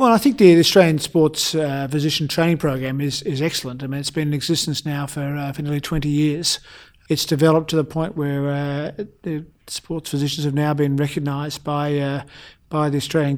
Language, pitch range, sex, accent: English, 145-170 Hz, male, Australian